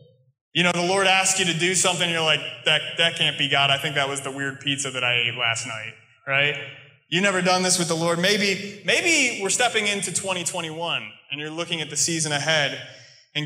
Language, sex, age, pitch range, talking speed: English, male, 20-39, 135-175 Hz, 225 wpm